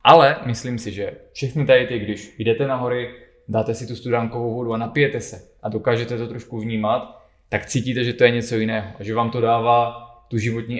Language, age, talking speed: Czech, 20-39, 210 wpm